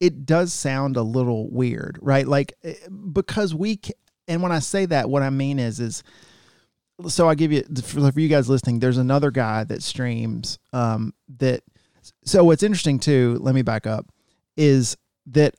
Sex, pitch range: male, 120-150 Hz